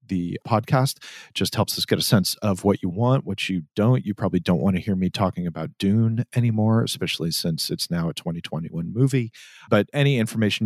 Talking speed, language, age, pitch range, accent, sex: 205 wpm, English, 40-59, 95-115 Hz, American, male